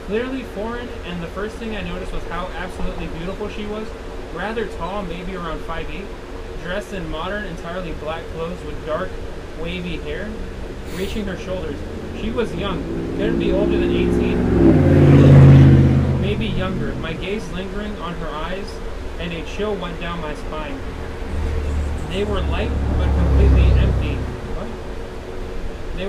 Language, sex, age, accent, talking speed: English, male, 20-39, American, 145 wpm